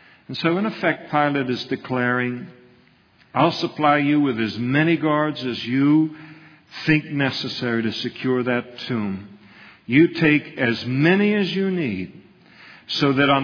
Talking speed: 145 wpm